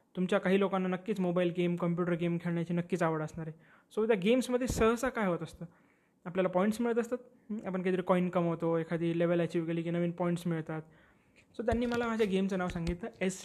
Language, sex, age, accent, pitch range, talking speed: Marathi, male, 20-39, native, 170-220 Hz, 205 wpm